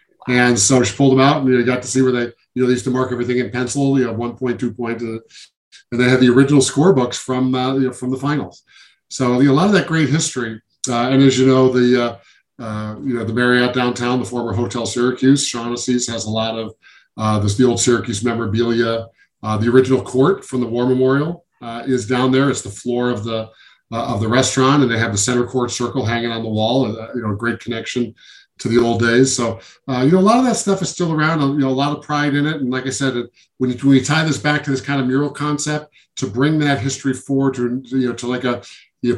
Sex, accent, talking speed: male, American, 260 wpm